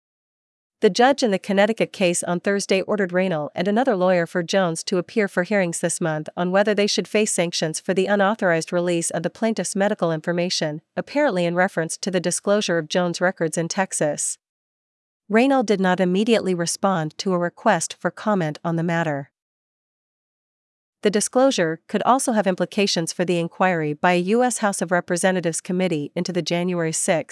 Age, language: 40-59, English